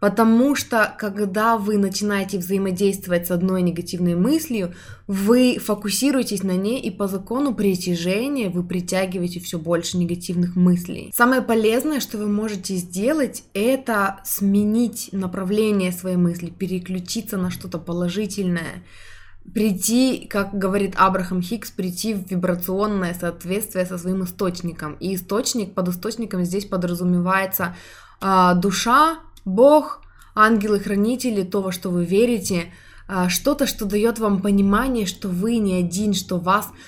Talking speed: 125 wpm